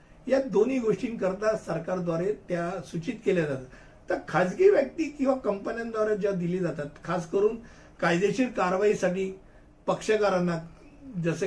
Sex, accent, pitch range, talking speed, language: male, native, 175-215 Hz, 80 wpm, Hindi